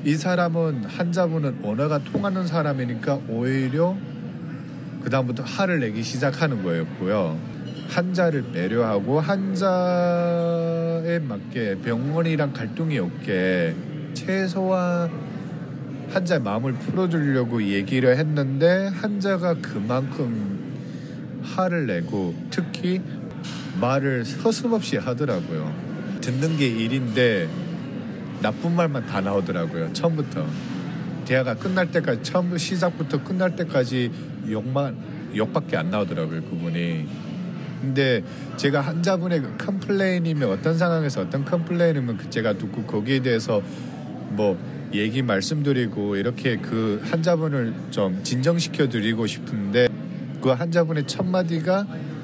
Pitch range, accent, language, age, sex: 125-175 Hz, native, Korean, 40-59, male